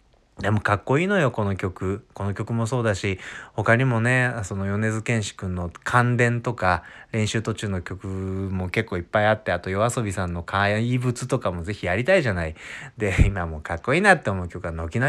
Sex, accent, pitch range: male, native, 95-135 Hz